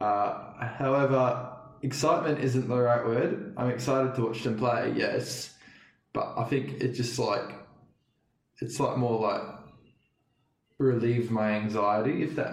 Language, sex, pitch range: English, male, 115-135 Hz